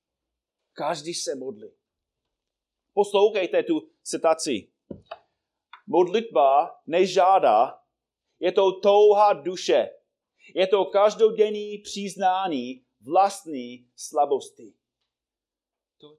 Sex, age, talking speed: male, 30-49, 70 wpm